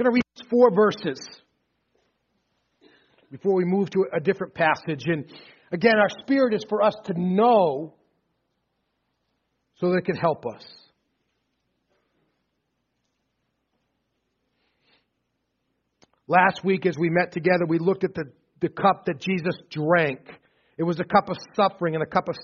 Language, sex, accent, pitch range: English, male, American, 165-195 Hz